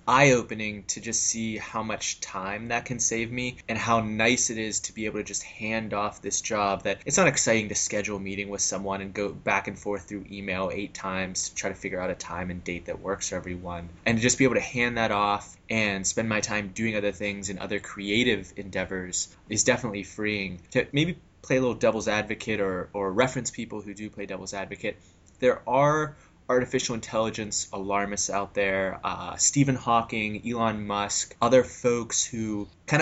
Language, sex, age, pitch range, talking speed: English, male, 20-39, 95-115 Hz, 205 wpm